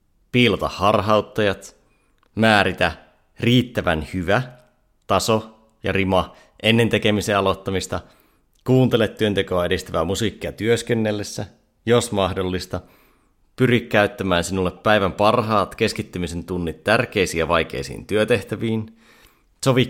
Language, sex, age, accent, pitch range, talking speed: Finnish, male, 30-49, native, 85-110 Hz, 90 wpm